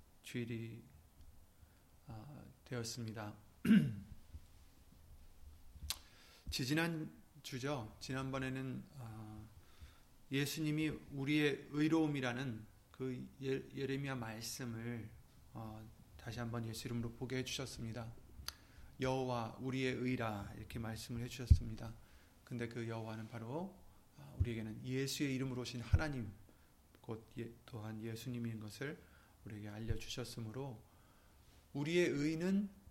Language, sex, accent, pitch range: Korean, male, native, 105-135 Hz